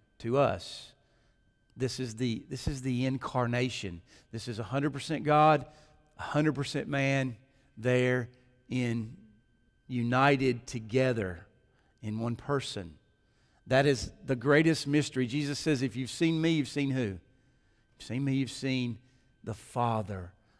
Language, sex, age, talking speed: English, male, 40-59, 130 wpm